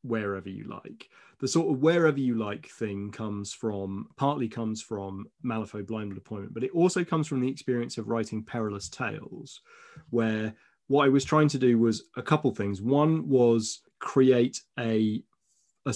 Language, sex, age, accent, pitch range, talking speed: English, male, 30-49, British, 105-135 Hz, 170 wpm